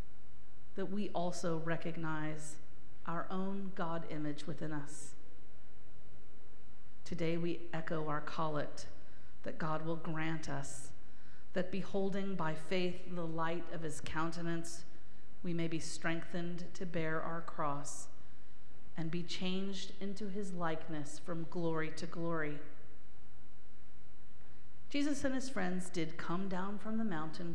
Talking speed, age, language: 125 wpm, 40-59, English